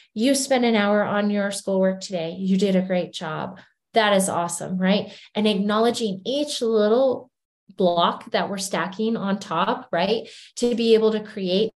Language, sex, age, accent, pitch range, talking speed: English, female, 20-39, American, 185-220 Hz, 170 wpm